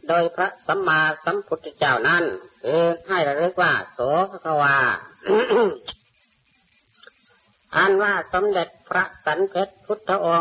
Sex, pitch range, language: female, 155-200 Hz, Thai